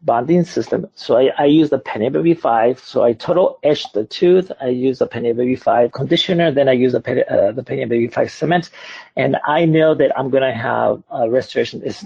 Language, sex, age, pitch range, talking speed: English, male, 50-69, 125-155 Hz, 200 wpm